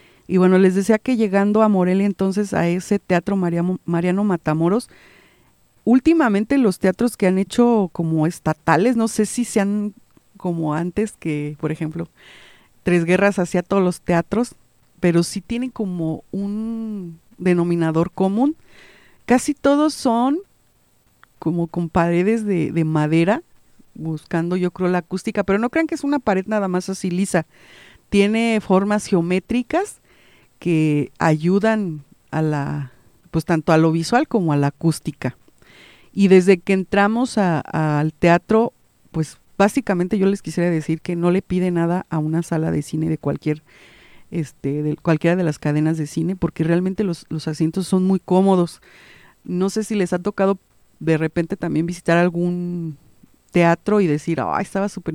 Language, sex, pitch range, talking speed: Spanish, female, 160-200 Hz, 155 wpm